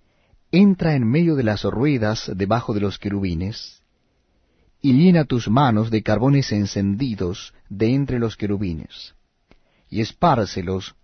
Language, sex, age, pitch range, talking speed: Spanish, male, 40-59, 100-135 Hz, 125 wpm